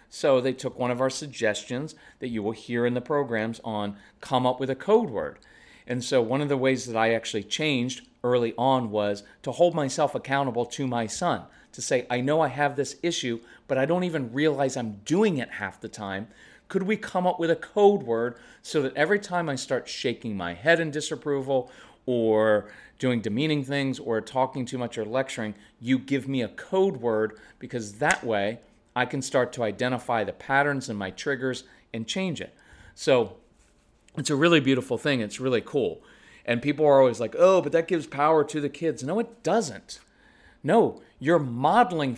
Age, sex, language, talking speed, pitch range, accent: 40-59, male, English, 200 wpm, 120-150 Hz, American